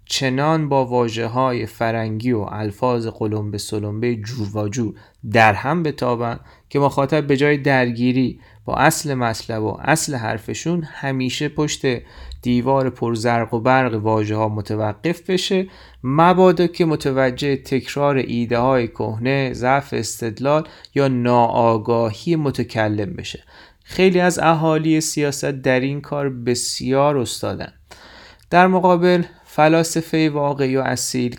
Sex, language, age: male, Persian, 30-49